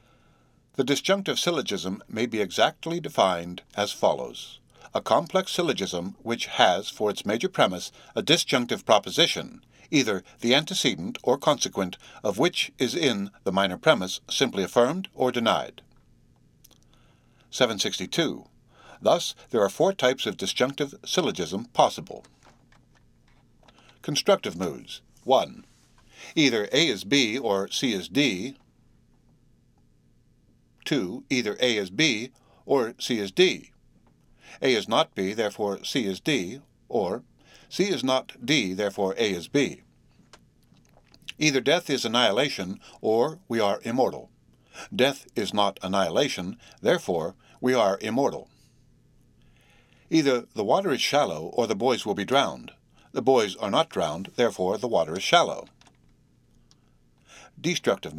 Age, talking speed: 60-79, 125 wpm